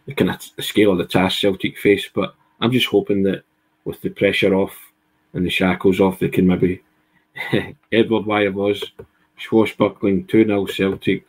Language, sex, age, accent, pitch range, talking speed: English, male, 20-39, British, 100-115 Hz, 170 wpm